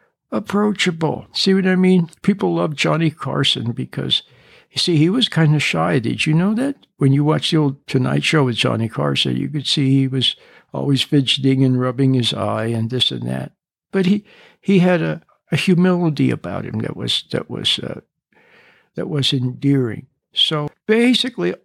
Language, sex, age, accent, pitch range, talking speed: English, male, 60-79, American, 135-185 Hz, 180 wpm